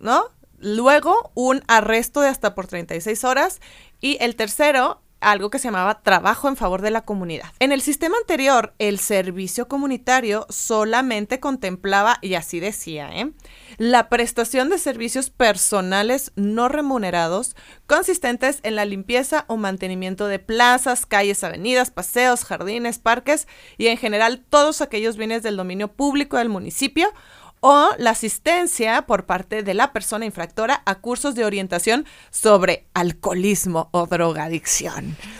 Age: 30-49